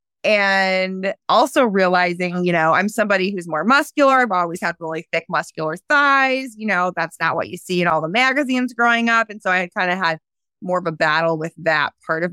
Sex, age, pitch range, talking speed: female, 20-39, 170-245 Hz, 215 wpm